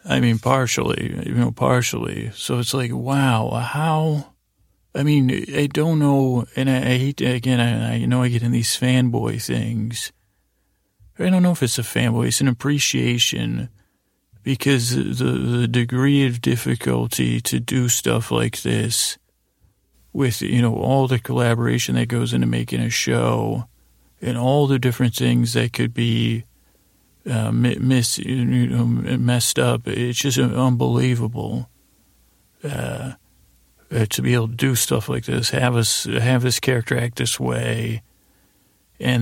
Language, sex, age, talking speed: English, male, 40-59, 150 wpm